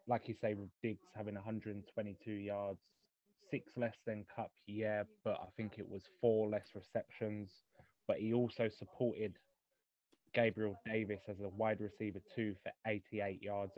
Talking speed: 155 wpm